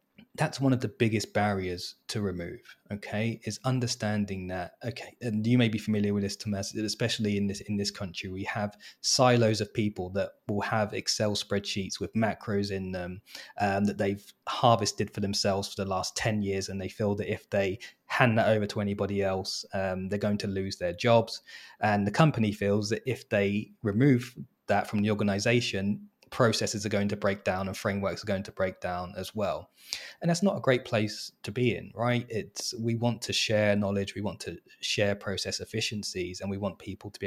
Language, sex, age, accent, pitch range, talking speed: English, male, 20-39, British, 100-110 Hz, 205 wpm